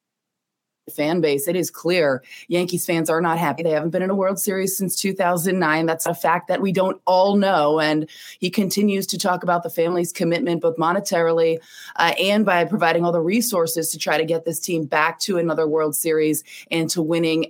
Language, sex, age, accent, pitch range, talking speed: English, female, 20-39, American, 155-185 Hz, 200 wpm